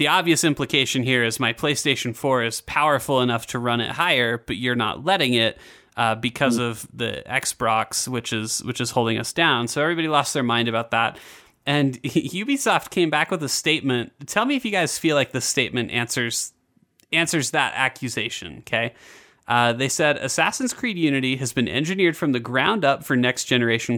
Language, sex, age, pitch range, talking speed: English, male, 30-49, 120-155 Hz, 195 wpm